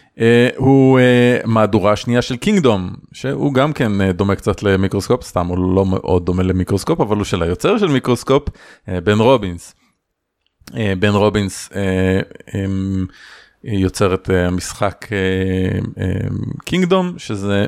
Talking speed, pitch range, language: 145 wpm, 95-115 Hz, Hebrew